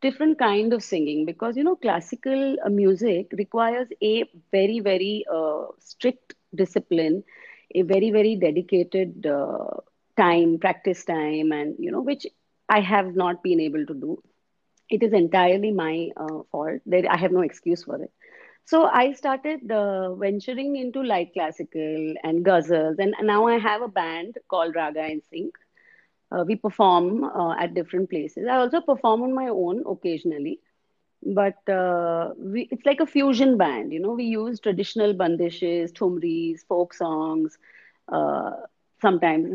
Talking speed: 155 wpm